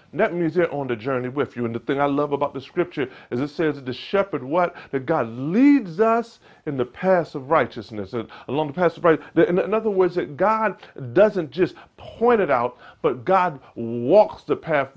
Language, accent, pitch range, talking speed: English, American, 135-200 Hz, 215 wpm